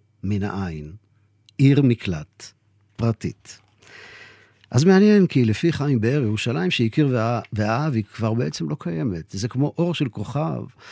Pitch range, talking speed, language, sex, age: 100-125 Hz, 130 wpm, Hebrew, male, 50-69